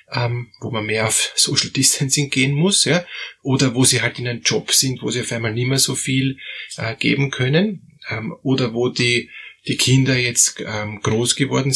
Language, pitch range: German, 110-140 Hz